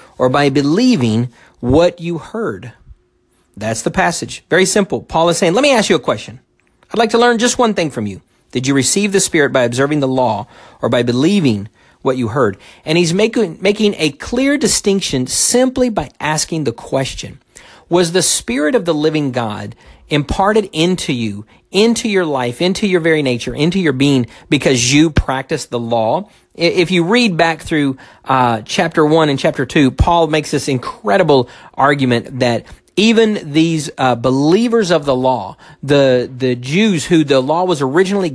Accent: American